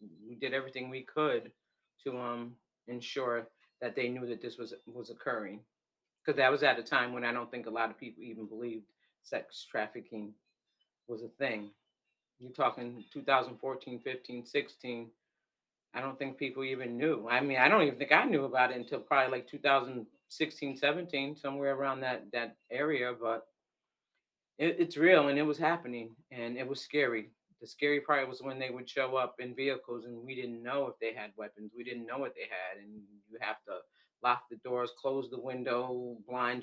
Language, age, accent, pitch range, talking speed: English, 40-59, American, 120-140 Hz, 190 wpm